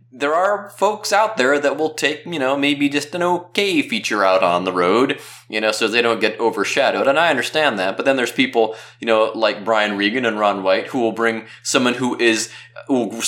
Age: 20-39